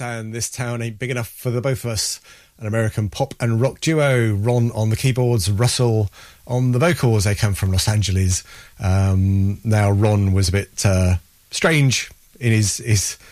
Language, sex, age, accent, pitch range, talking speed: English, male, 30-49, British, 105-125 Hz, 185 wpm